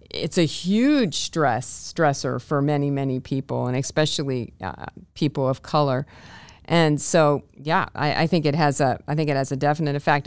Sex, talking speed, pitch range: female, 180 wpm, 135-155 Hz